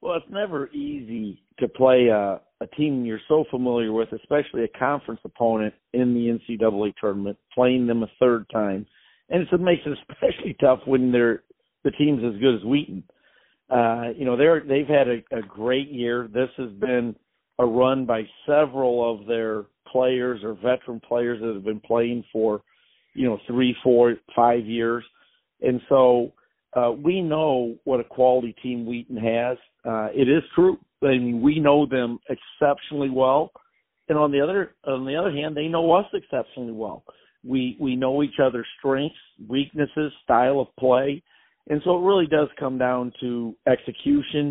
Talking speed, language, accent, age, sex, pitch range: 175 wpm, English, American, 50-69, male, 120-140 Hz